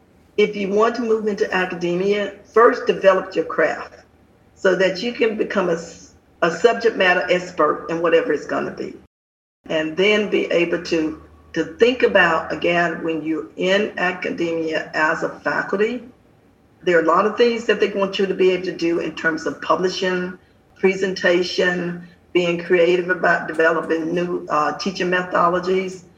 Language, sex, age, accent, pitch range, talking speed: English, female, 50-69, American, 165-195 Hz, 165 wpm